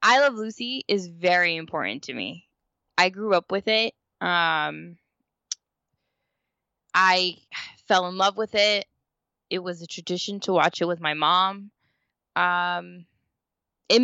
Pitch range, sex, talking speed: 165-200 Hz, female, 135 wpm